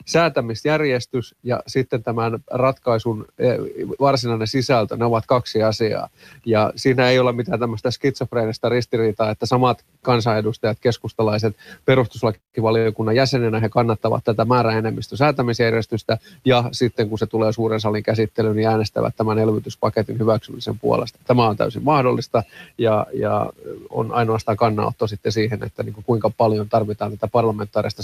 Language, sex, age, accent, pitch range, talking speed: Finnish, male, 30-49, native, 110-130 Hz, 130 wpm